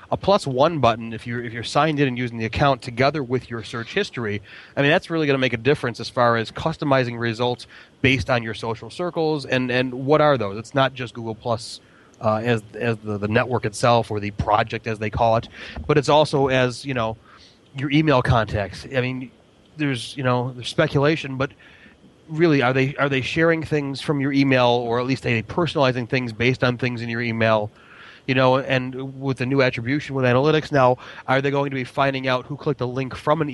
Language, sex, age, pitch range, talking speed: English, male, 30-49, 115-140 Hz, 225 wpm